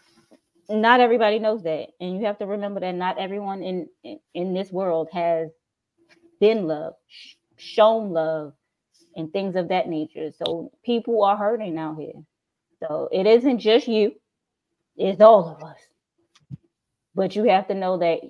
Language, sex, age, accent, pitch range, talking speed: English, female, 20-39, American, 170-235 Hz, 155 wpm